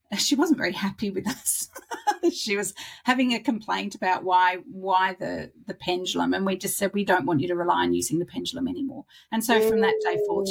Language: English